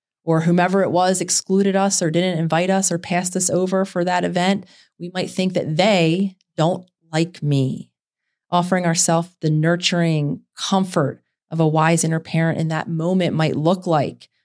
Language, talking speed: English, 170 wpm